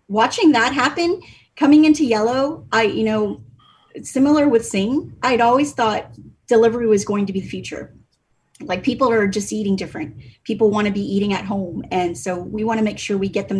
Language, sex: English, female